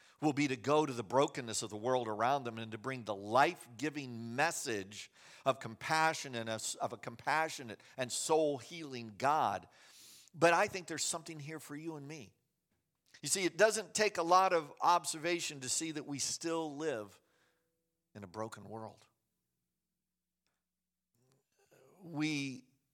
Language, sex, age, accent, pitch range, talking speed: English, male, 50-69, American, 115-155 Hz, 150 wpm